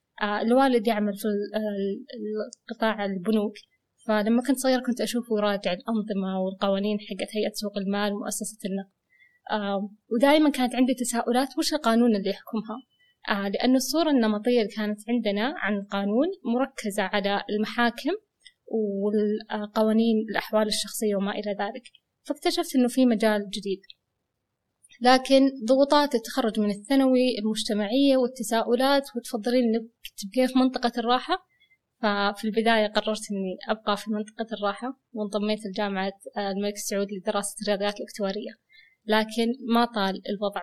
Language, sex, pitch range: Arabic, female, 205-245 Hz